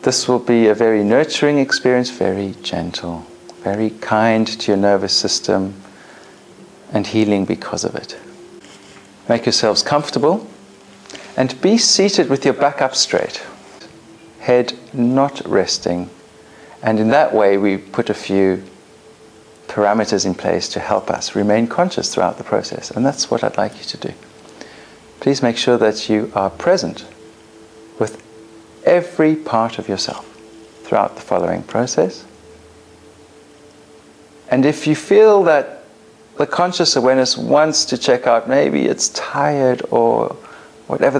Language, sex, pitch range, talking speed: English, male, 105-135 Hz, 135 wpm